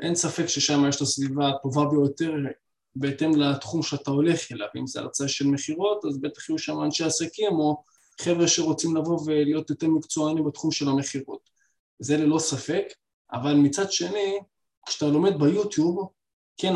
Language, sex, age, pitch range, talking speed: Hebrew, male, 20-39, 145-175 Hz, 160 wpm